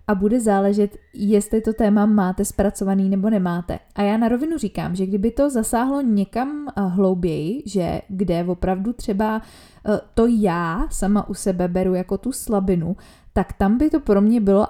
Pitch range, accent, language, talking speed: 190-215 Hz, native, Czech, 165 wpm